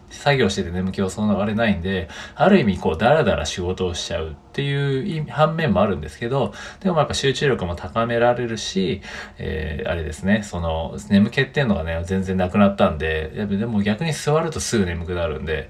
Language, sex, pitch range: Japanese, male, 90-130 Hz